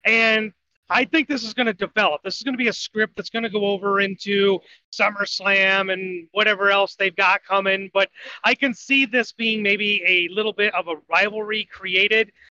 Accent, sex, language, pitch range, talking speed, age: American, male, English, 195-235 Hz, 200 wpm, 30-49